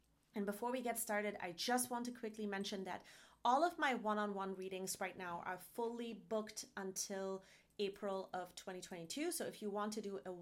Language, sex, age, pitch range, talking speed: English, female, 30-49, 195-225 Hz, 190 wpm